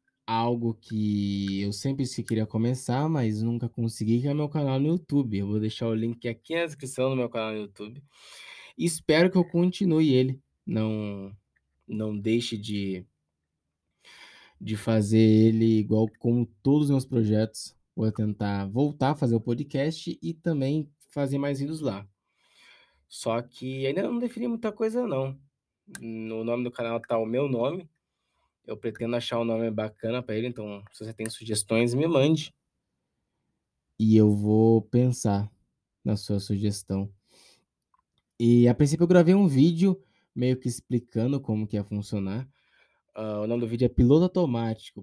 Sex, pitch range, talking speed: male, 110-150 Hz, 160 wpm